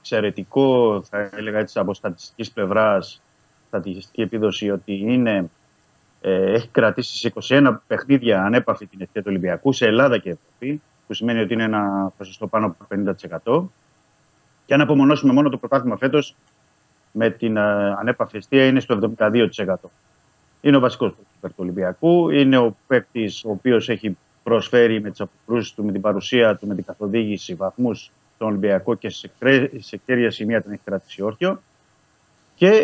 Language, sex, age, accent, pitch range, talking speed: Greek, male, 30-49, native, 100-130 Hz, 155 wpm